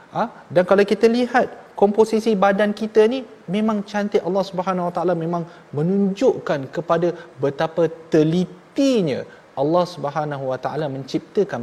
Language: Malayalam